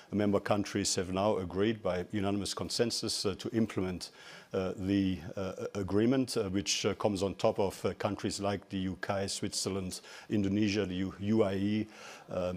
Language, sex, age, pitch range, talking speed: English, male, 50-69, 100-115 Hz, 160 wpm